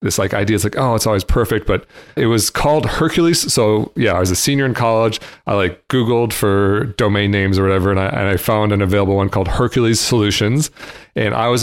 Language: English